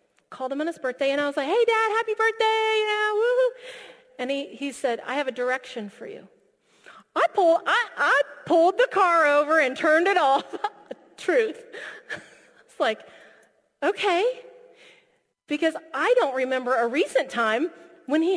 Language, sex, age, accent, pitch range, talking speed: English, female, 40-59, American, 295-450 Hz, 165 wpm